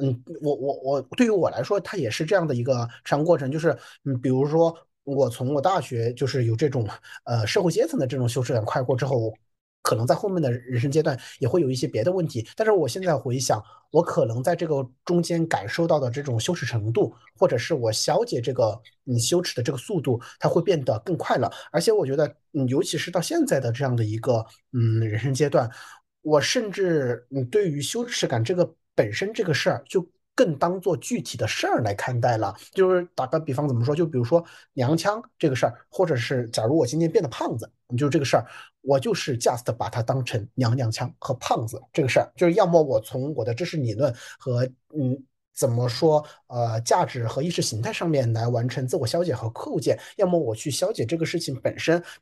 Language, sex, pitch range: Chinese, male, 120-165 Hz